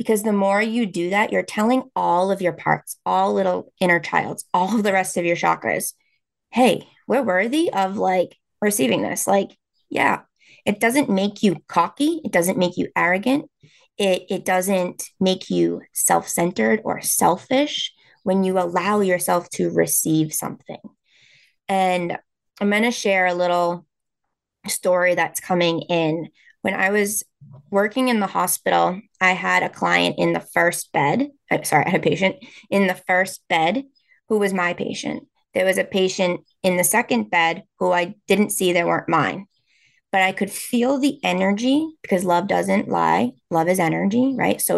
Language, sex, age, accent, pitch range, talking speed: English, female, 20-39, American, 175-215 Hz, 170 wpm